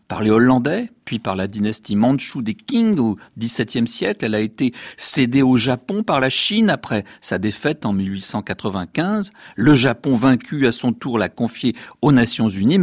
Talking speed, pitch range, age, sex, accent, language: 180 wpm, 100-135 Hz, 50-69, male, French, French